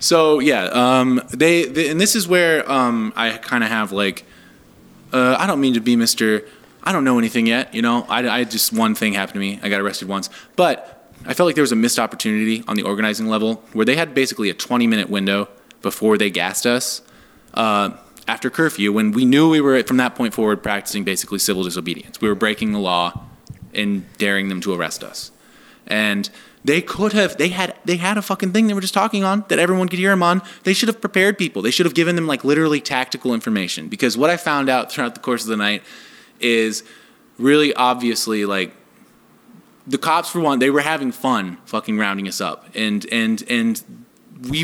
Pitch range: 110-175 Hz